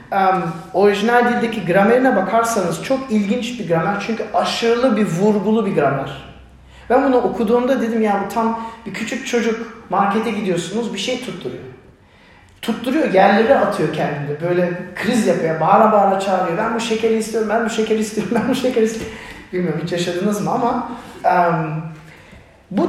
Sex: male